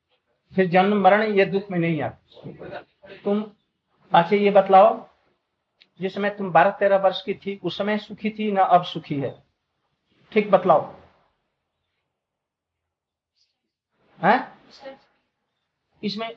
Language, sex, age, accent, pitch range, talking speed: Hindi, male, 50-69, native, 150-210 Hz, 100 wpm